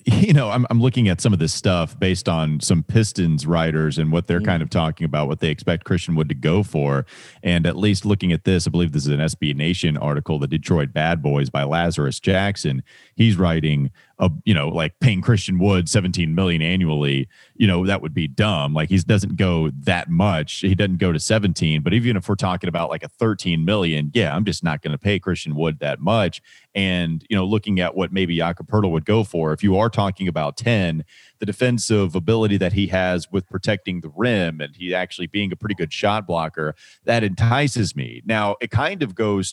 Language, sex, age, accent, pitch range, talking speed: English, male, 30-49, American, 80-105 Hz, 220 wpm